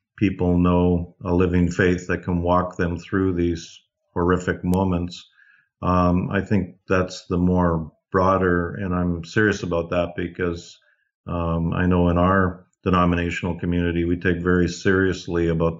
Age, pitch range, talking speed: 50-69, 85-95 Hz, 145 wpm